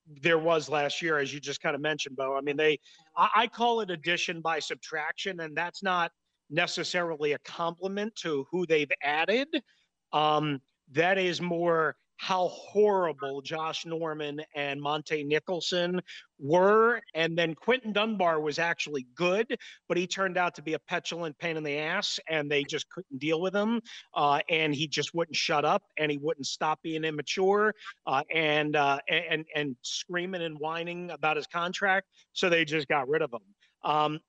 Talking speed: 175 wpm